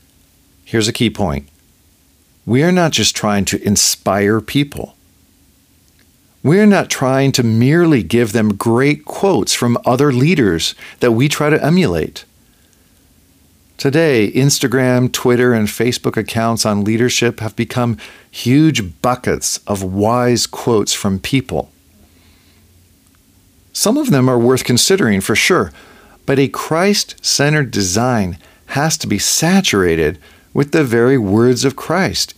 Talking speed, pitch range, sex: 130 wpm, 90-130 Hz, male